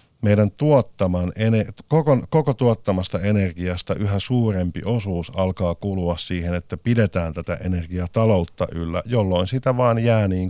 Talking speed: 125 wpm